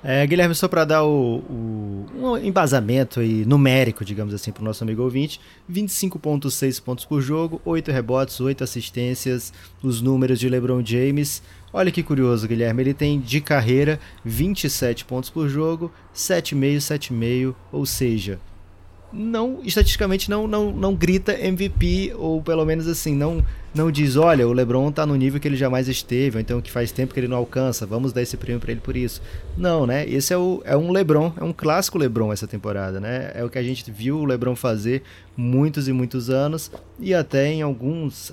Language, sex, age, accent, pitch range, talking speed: Portuguese, male, 20-39, Brazilian, 110-135 Hz, 190 wpm